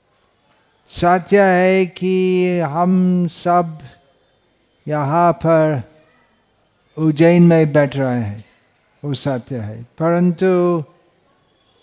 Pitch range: 145-175 Hz